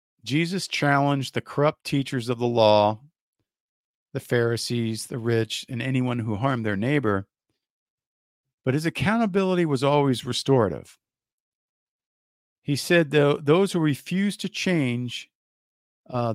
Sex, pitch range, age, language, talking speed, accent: male, 110-150 Hz, 50-69, English, 115 wpm, American